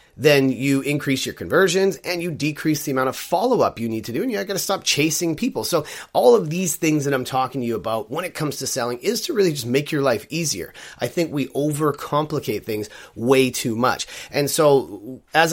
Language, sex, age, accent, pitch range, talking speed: English, male, 30-49, American, 120-150 Hz, 220 wpm